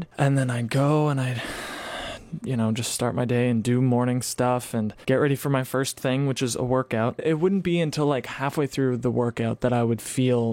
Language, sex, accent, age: English, male, American, 20-39